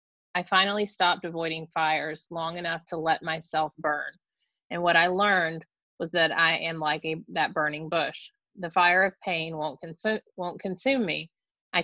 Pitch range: 155-180 Hz